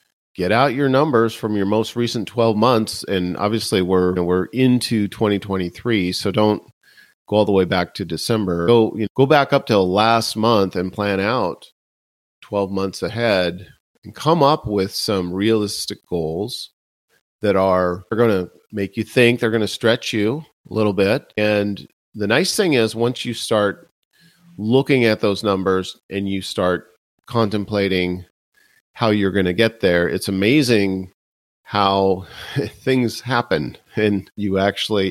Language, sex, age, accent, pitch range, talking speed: English, male, 40-59, American, 95-115 Hz, 160 wpm